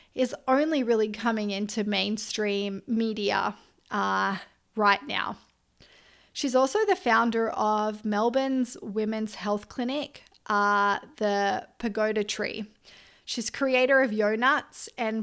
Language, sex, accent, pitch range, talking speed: English, female, Australian, 210-260 Hz, 110 wpm